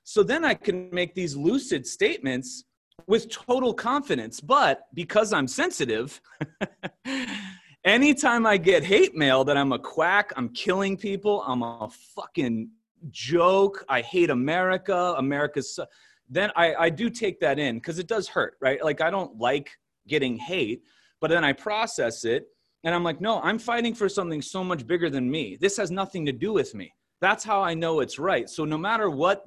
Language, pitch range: English, 145-220 Hz